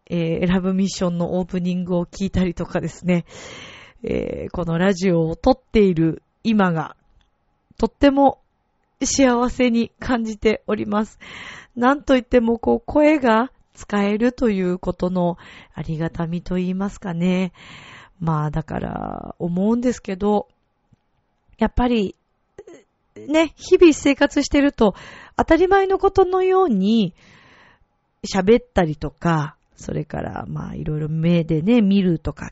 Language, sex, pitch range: Japanese, female, 175-240 Hz